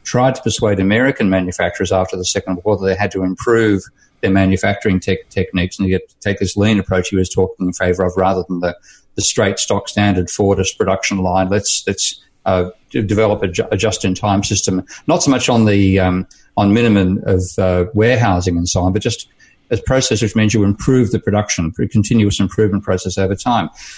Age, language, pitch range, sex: 50-69, English, 95-115 Hz, male